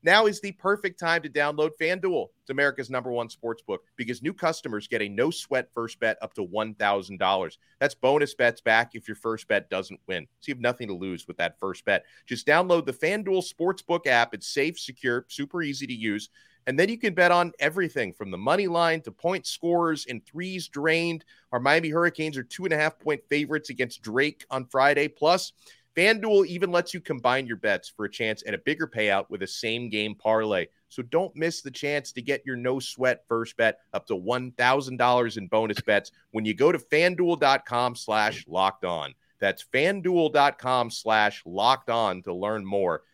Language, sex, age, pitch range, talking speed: English, male, 30-49, 115-165 Hz, 190 wpm